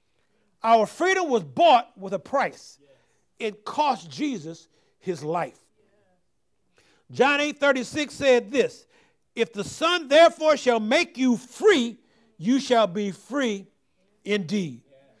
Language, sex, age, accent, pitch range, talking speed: English, male, 50-69, American, 210-310 Hz, 120 wpm